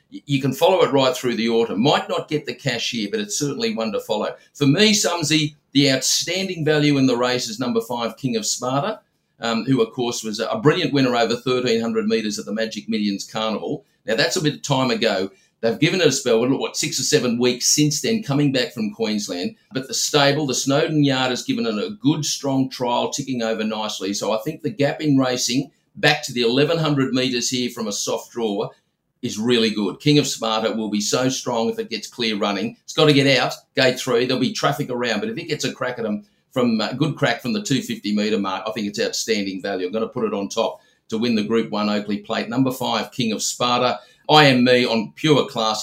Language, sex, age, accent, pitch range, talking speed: English, male, 50-69, Australian, 110-150 Hz, 235 wpm